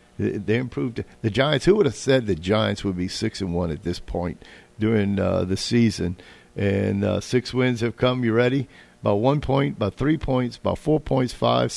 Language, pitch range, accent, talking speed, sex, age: English, 100-130 Hz, American, 205 wpm, male, 50-69